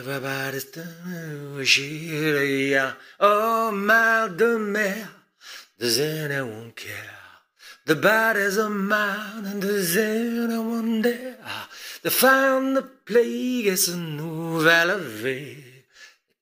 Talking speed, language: 100 wpm, English